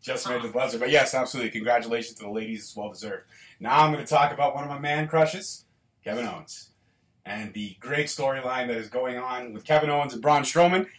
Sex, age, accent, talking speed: male, 30-49, American, 220 wpm